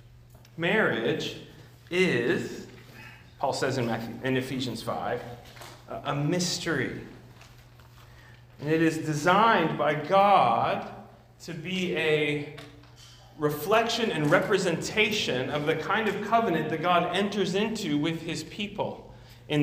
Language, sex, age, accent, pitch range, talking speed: English, male, 40-59, American, 125-170 Hz, 105 wpm